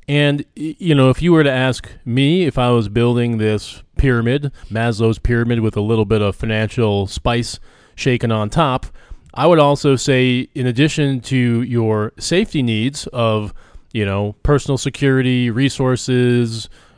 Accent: American